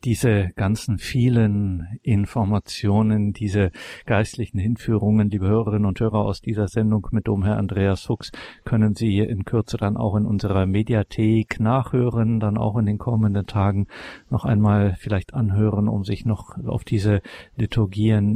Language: German